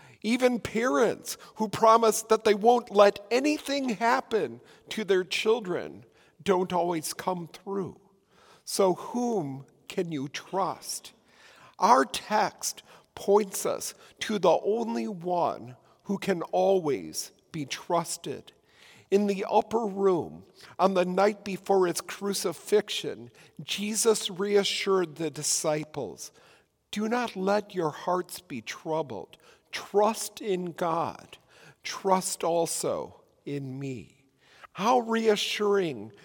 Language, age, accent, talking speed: English, 50-69, American, 110 wpm